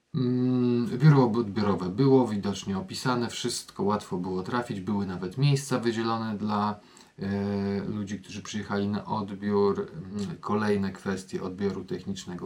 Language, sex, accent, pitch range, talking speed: Polish, male, native, 95-125 Hz, 110 wpm